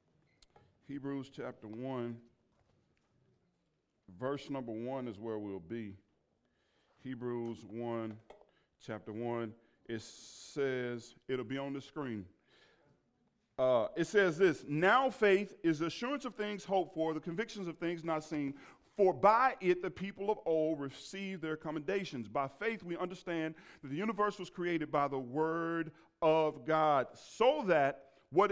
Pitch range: 120-165 Hz